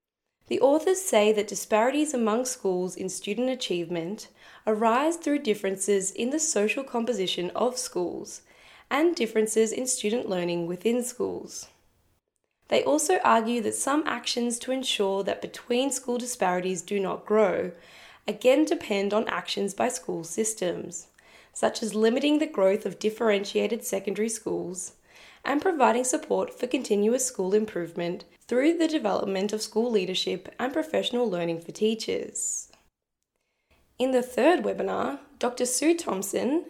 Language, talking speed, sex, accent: English, 130 wpm, female, Australian